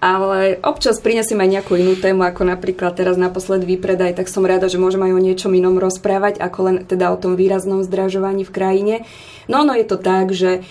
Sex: female